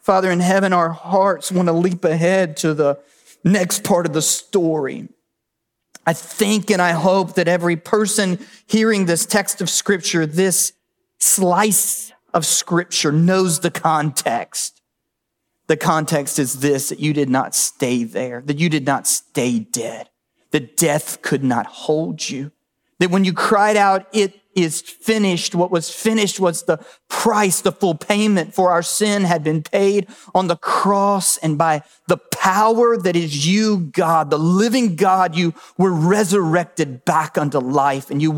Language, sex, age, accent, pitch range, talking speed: English, male, 40-59, American, 155-195 Hz, 160 wpm